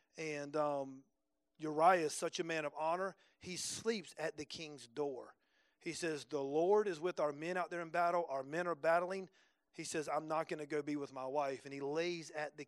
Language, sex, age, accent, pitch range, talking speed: English, male, 40-59, American, 150-180 Hz, 220 wpm